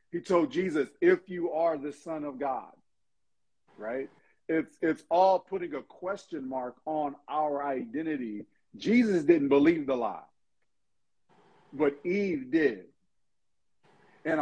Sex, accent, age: male, American, 40-59